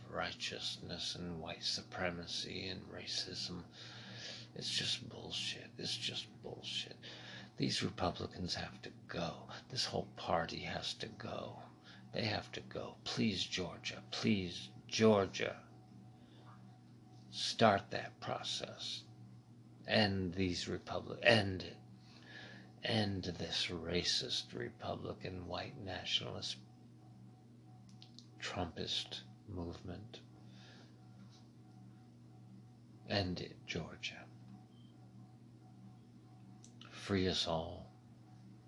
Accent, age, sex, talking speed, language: American, 60-79, male, 80 wpm, English